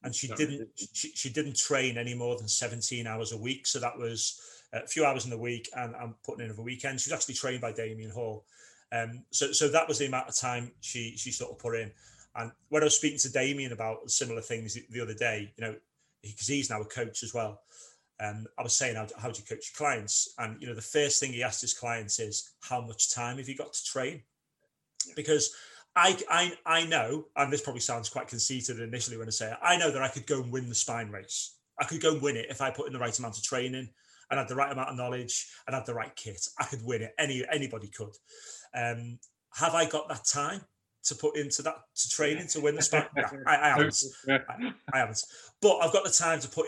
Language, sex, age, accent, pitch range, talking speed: English, male, 30-49, British, 115-145 Hz, 250 wpm